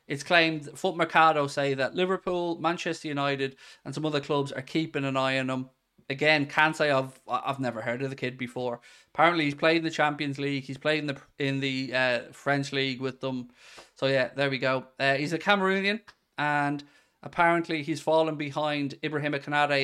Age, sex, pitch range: 20-39, male, 130-155 Hz